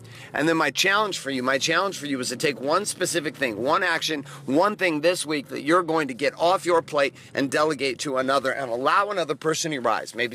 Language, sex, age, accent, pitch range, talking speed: English, male, 40-59, American, 130-175 Hz, 240 wpm